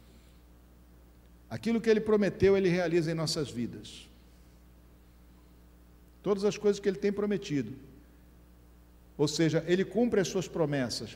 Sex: male